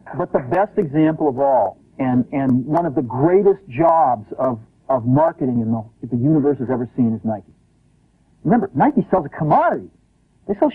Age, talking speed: 50-69, 185 wpm